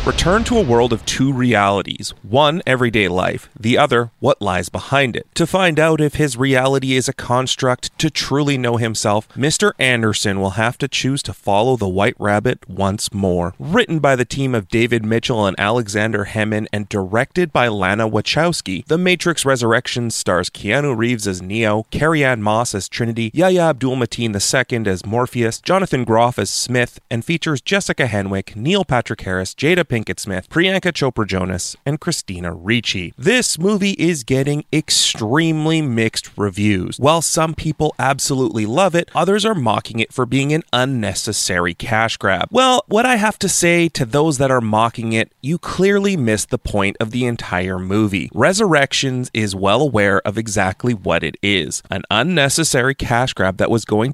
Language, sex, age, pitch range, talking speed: English, male, 30-49, 105-150 Hz, 170 wpm